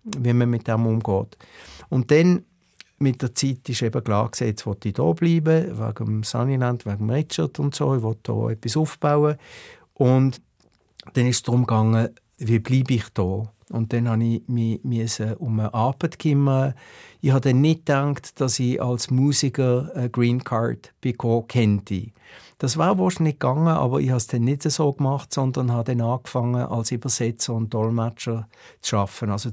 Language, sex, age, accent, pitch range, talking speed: German, male, 60-79, Austrian, 110-135 Hz, 170 wpm